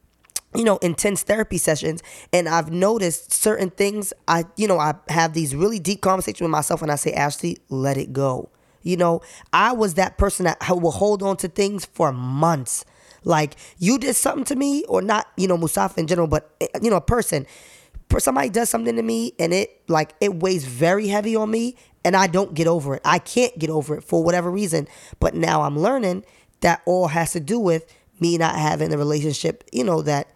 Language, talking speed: English, 210 wpm